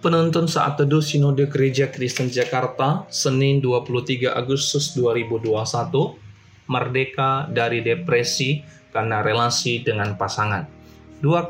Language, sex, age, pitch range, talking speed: Indonesian, male, 20-39, 125-150 Hz, 100 wpm